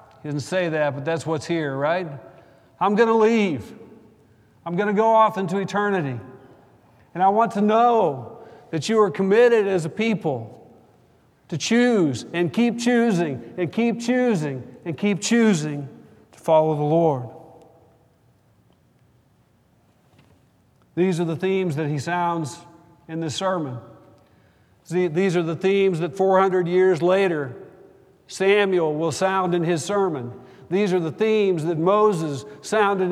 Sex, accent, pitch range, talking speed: male, American, 155-195 Hz, 140 wpm